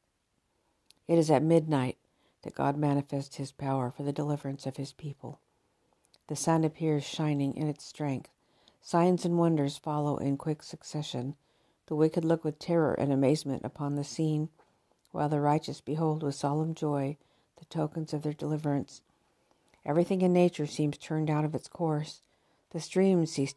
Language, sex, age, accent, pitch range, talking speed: English, female, 60-79, American, 140-160 Hz, 160 wpm